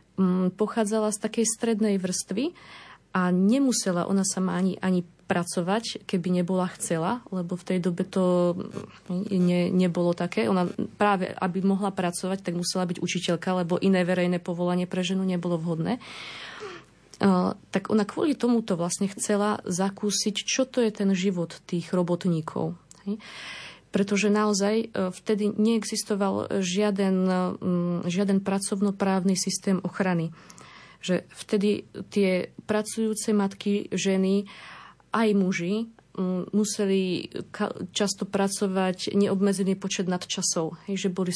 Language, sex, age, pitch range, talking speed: Slovak, female, 20-39, 180-210 Hz, 115 wpm